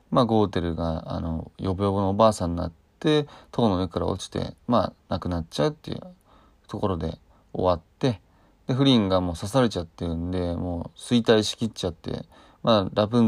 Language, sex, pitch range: Japanese, male, 90-120 Hz